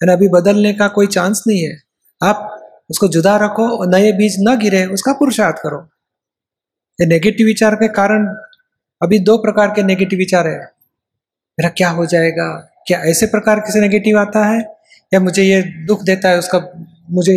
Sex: male